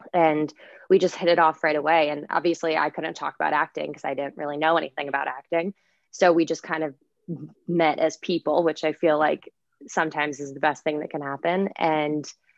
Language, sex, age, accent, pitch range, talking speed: English, female, 20-39, American, 150-170 Hz, 210 wpm